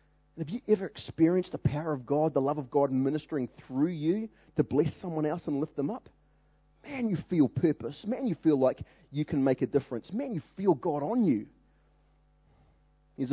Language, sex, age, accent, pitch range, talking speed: English, male, 30-49, Australian, 115-150 Hz, 195 wpm